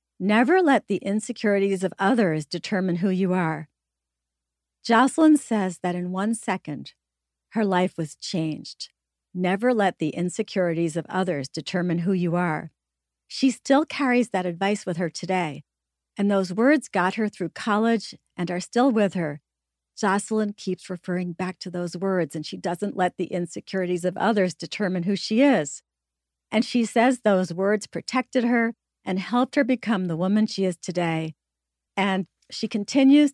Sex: female